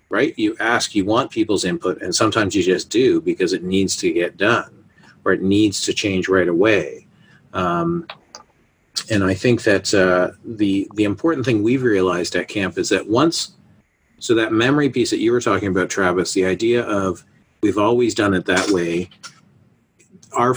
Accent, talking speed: American, 180 wpm